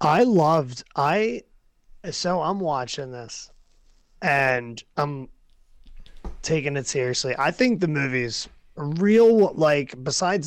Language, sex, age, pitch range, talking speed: English, male, 30-49, 130-175 Hz, 110 wpm